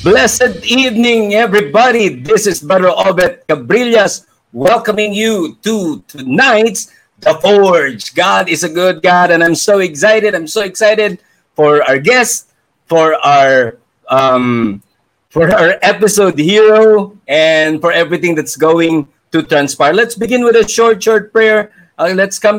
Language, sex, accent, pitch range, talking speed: Filipino, male, native, 165-205 Hz, 140 wpm